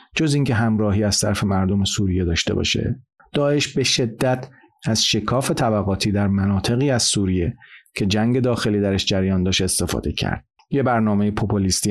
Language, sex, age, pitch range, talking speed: Persian, male, 40-59, 95-115 Hz, 150 wpm